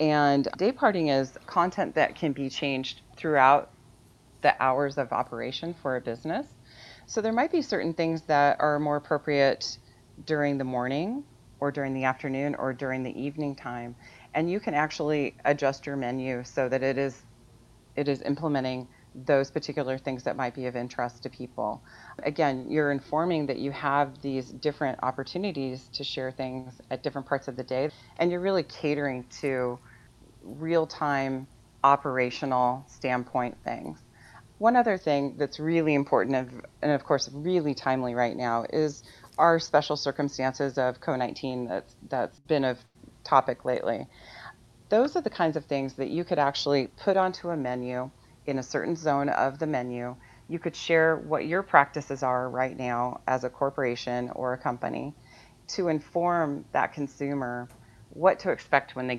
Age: 30-49